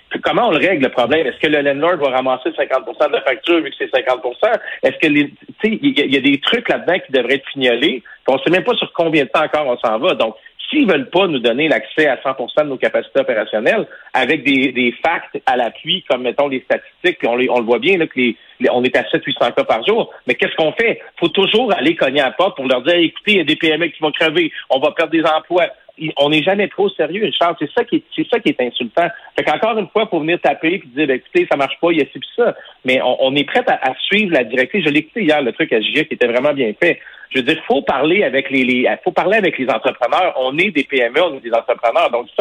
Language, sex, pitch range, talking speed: French, male, 135-190 Hz, 285 wpm